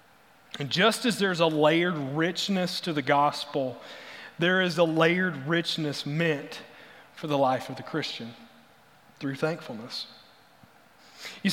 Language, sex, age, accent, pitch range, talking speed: English, male, 30-49, American, 155-195 Hz, 130 wpm